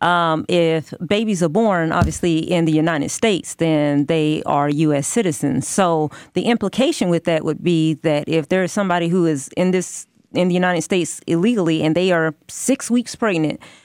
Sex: female